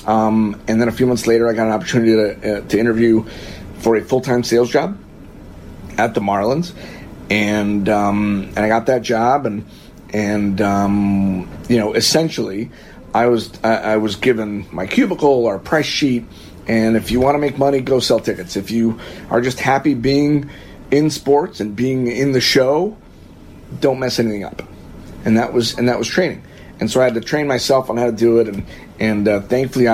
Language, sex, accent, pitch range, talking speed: English, male, American, 105-125 Hz, 195 wpm